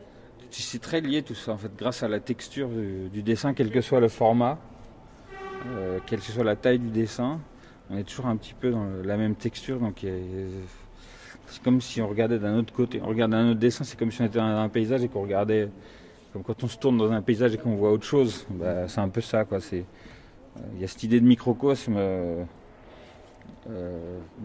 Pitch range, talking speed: 100-120 Hz, 240 wpm